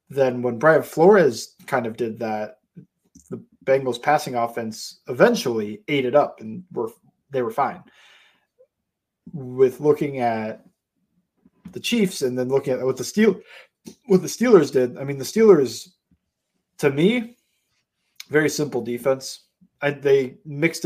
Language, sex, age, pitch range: English, male, 20-39, 120-160 Hz